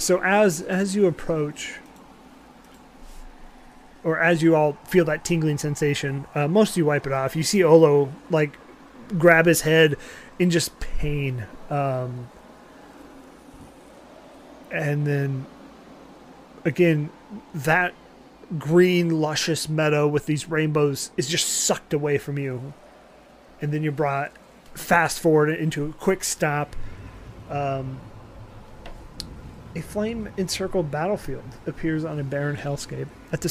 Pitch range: 135-175 Hz